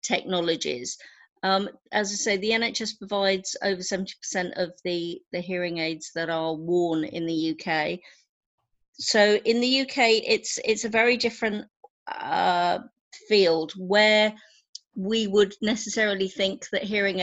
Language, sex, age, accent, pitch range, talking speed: English, female, 40-59, British, 175-210 Hz, 140 wpm